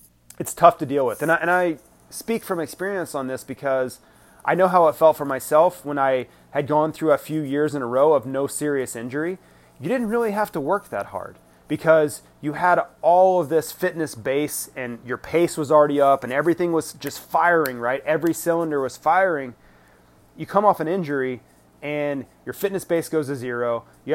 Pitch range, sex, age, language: 130-165 Hz, male, 30-49, English